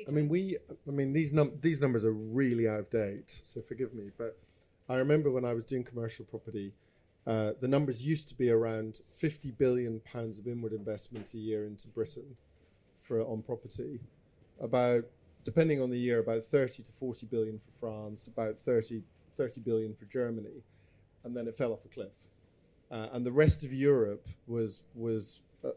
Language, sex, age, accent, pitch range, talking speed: English, male, 40-59, British, 110-130 Hz, 185 wpm